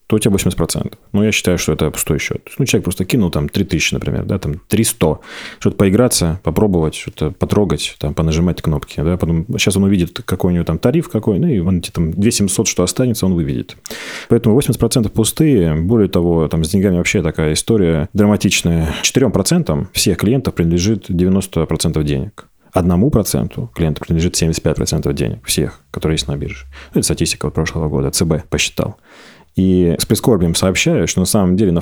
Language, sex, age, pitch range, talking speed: Russian, male, 30-49, 80-105 Hz, 180 wpm